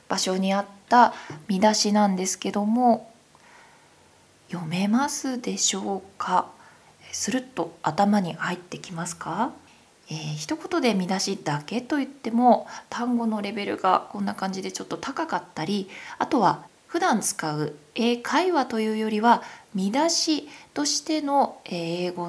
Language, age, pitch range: Japanese, 20-39, 180-255 Hz